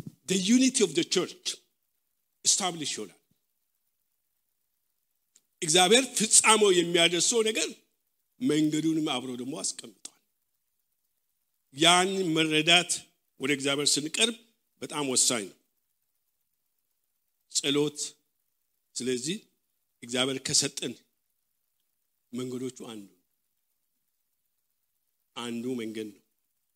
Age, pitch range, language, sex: 50-69, 145-235 Hz, English, male